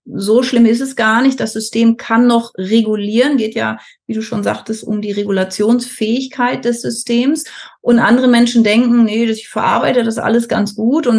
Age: 30-49